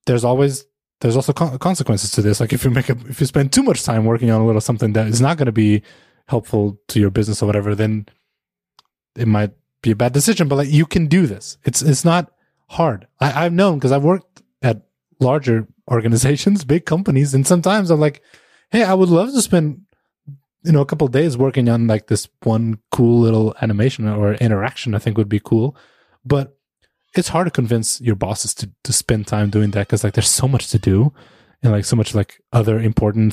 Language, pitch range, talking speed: English, 110-145 Hz, 210 wpm